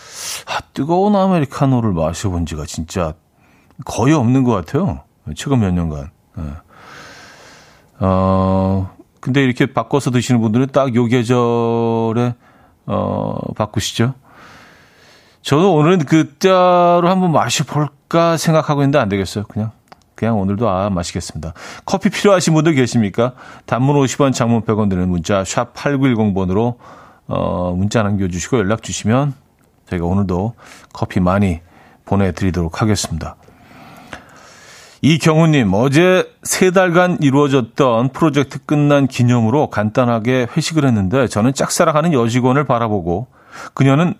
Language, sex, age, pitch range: Korean, male, 40-59, 100-145 Hz